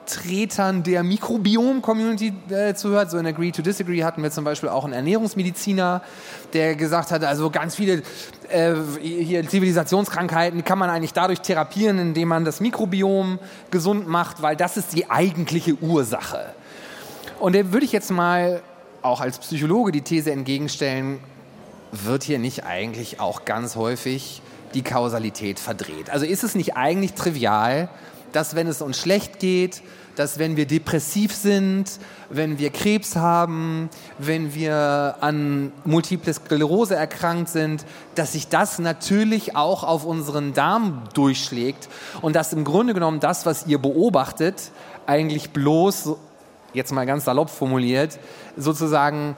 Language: German